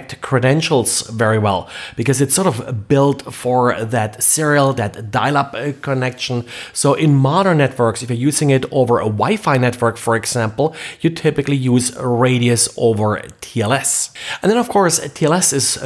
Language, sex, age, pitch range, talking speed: English, male, 30-49, 120-150 Hz, 155 wpm